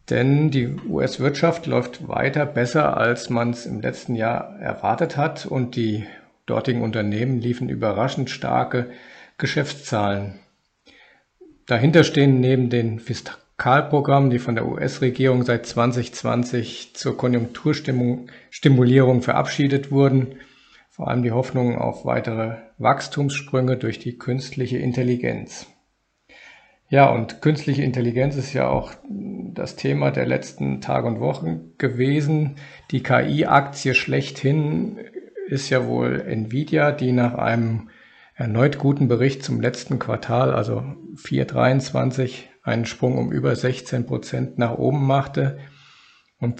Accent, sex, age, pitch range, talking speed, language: German, male, 50-69, 120-140 Hz, 115 wpm, German